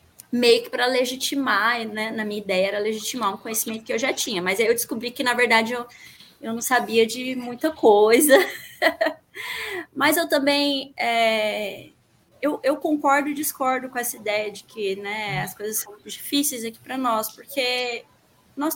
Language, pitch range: Portuguese, 215-280 Hz